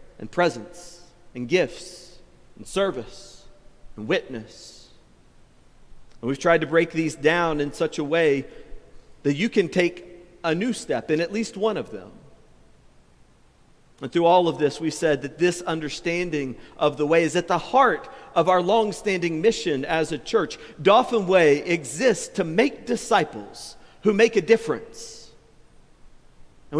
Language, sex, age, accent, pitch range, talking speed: English, male, 40-59, American, 155-190 Hz, 150 wpm